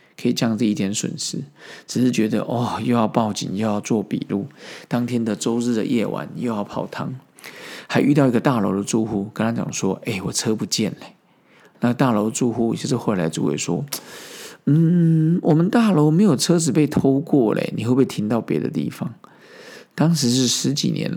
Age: 50-69